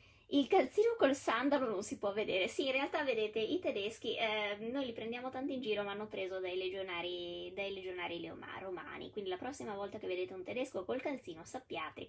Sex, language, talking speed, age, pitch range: female, Italian, 195 wpm, 20-39, 190-300 Hz